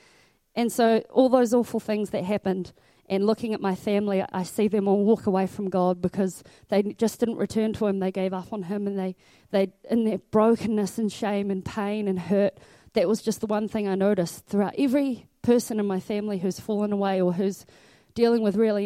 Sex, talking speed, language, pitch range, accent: female, 215 wpm, English, 185-220 Hz, Australian